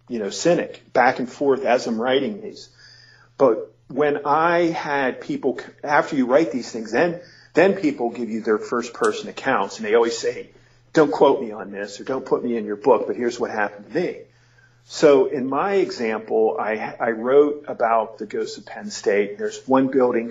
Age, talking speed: 40-59, 200 wpm